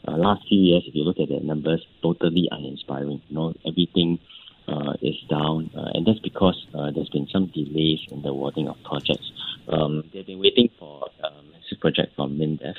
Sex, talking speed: male, 200 wpm